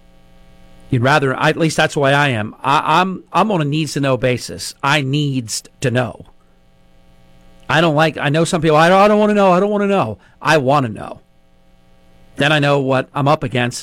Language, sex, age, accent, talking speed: English, male, 40-59, American, 215 wpm